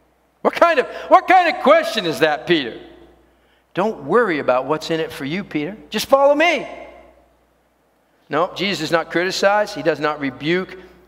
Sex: male